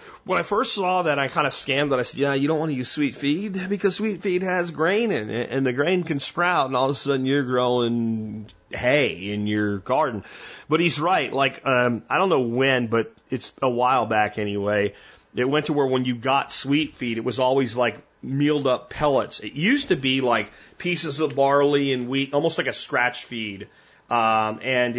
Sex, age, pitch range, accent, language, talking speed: male, 30-49, 120-145 Hz, American, English, 220 wpm